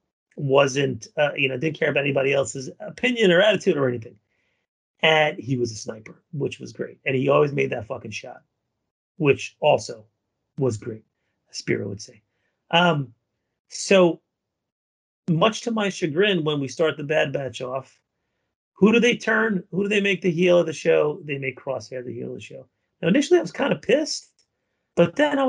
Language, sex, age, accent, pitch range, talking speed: English, male, 30-49, American, 125-165 Hz, 190 wpm